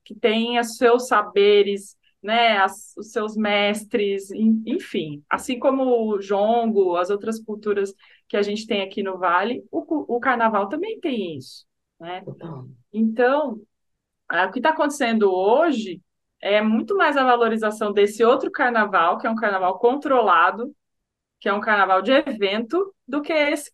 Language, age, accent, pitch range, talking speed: Portuguese, 20-39, Brazilian, 195-250 Hz, 145 wpm